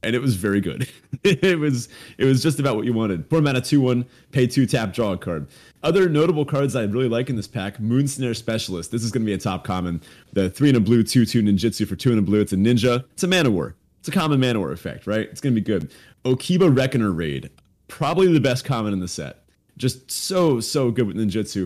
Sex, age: male, 30-49